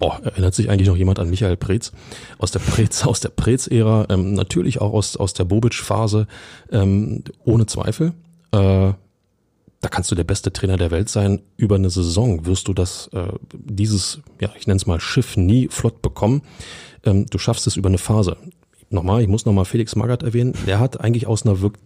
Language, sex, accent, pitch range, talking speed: German, male, German, 95-120 Hz, 200 wpm